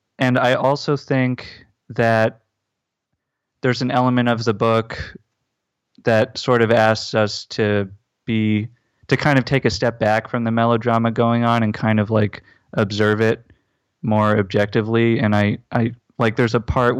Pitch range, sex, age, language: 105-120 Hz, male, 30-49, English